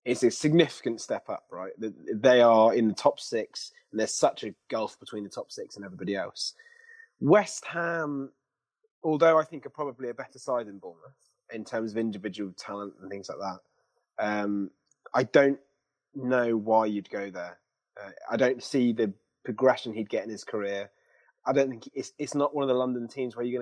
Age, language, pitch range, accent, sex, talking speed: 20-39, English, 100-135 Hz, British, male, 195 wpm